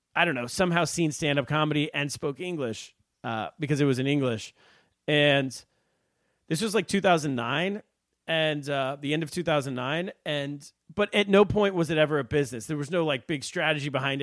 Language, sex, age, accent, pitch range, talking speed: English, male, 30-49, American, 120-145 Hz, 190 wpm